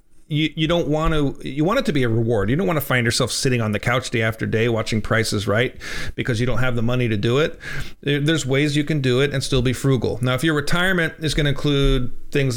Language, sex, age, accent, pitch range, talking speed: English, male, 40-59, American, 125-155 Hz, 265 wpm